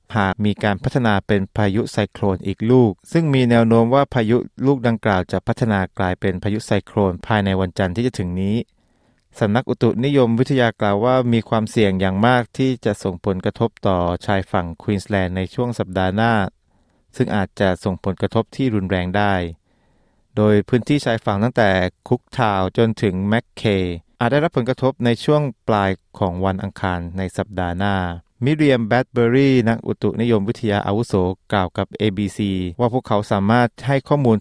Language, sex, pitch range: Thai, male, 95-120 Hz